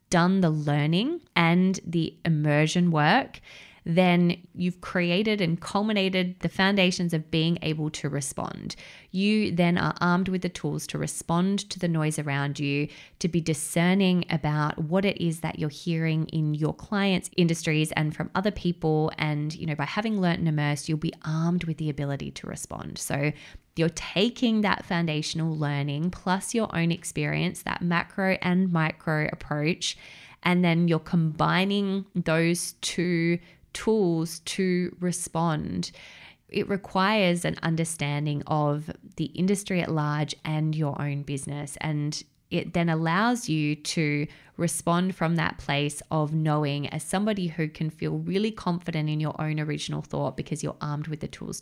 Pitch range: 155-180 Hz